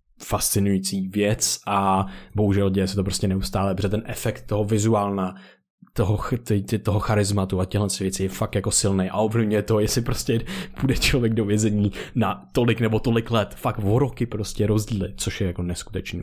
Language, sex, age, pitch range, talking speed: Czech, male, 20-39, 105-125 Hz, 180 wpm